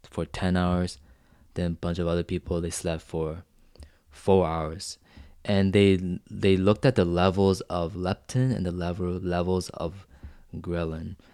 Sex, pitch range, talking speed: male, 85-100 Hz, 155 wpm